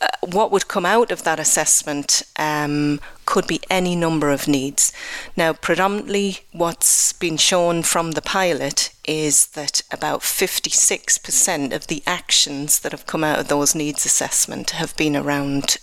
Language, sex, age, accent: English, female, 30-49, British